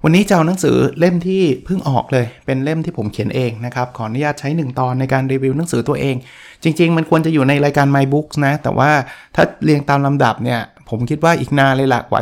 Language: Thai